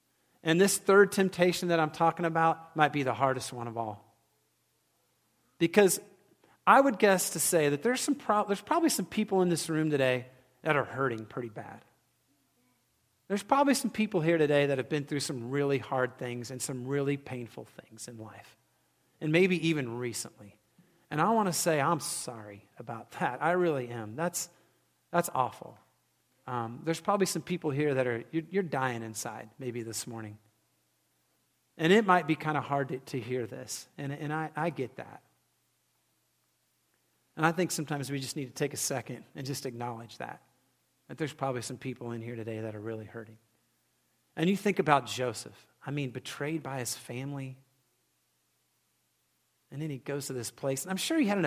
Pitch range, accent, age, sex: 120-170 Hz, American, 40-59, male